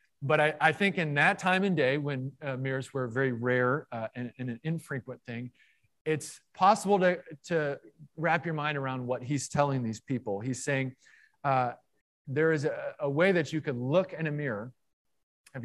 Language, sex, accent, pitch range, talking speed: English, male, American, 125-155 Hz, 190 wpm